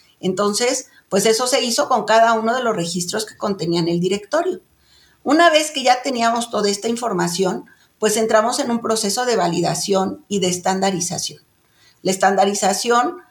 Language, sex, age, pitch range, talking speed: Spanish, female, 50-69, 195-235 Hz, 160 wpm